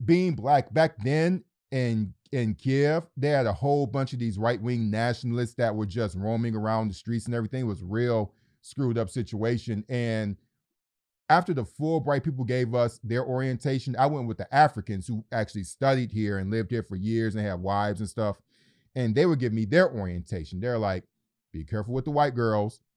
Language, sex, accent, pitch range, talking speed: English, male, American, 110-130 Hz, 195 wpm